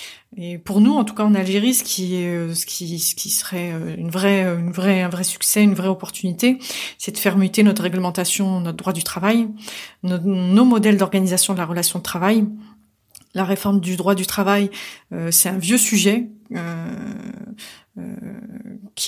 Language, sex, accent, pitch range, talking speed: French, female, French, 185-225 Hz, 180 wpm